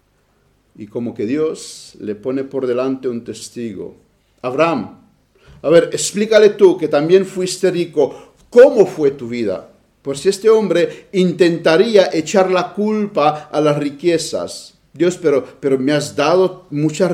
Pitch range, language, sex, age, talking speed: 125-185 Hz, Spanish, male, 50-69, 145 wpm